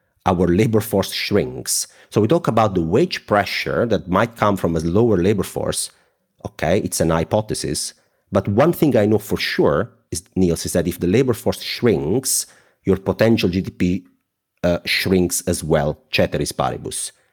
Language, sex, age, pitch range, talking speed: English, male, 30-49, 90-120 Hz, 165 wpm